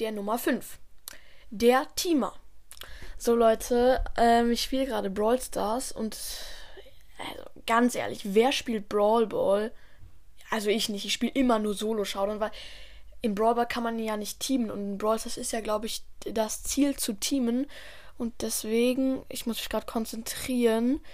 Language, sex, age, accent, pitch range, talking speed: German, female, 10-29, German, 210-250 Hz, 160 wpm